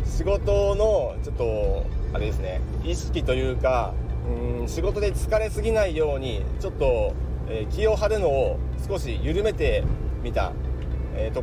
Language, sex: Japanese, male